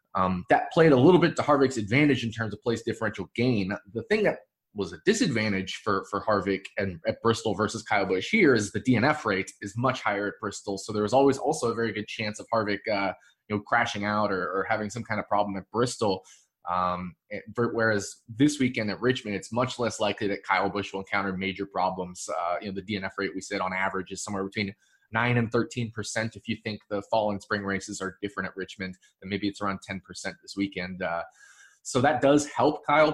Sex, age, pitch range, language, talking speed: male, 20-39, 100-115 Hz, English, 225 wpm